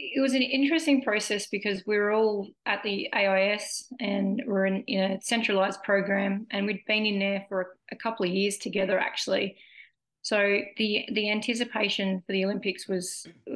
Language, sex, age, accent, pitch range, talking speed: English, female, 30-49, Australian, 190-220 Hz, 185 wpm